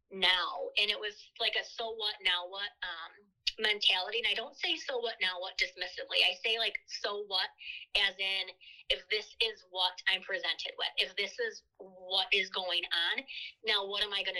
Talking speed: 195 wpm